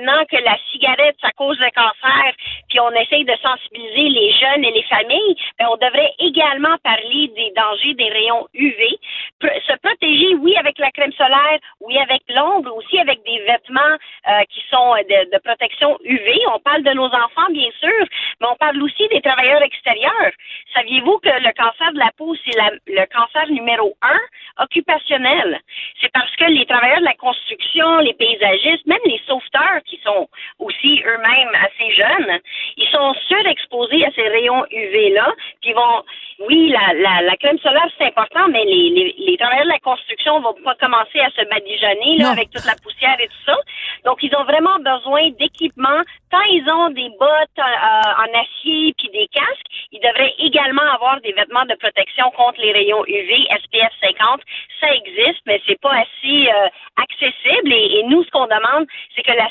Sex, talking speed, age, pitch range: female, 185 wpm, 40-59, 235-315 Hz